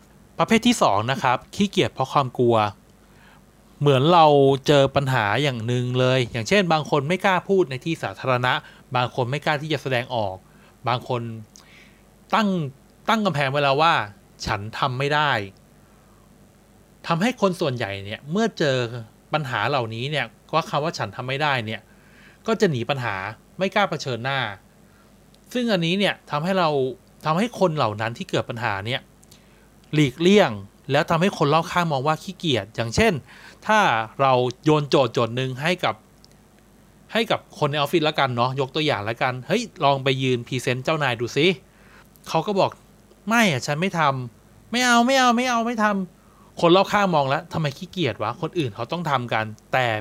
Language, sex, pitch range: Thai, male, 125-185 Hz